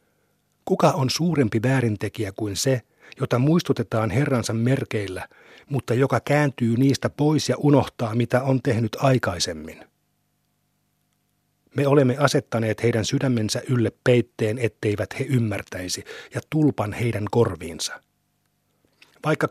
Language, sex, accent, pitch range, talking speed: Finnish, male, native, 115-140 Hz, 110 wpm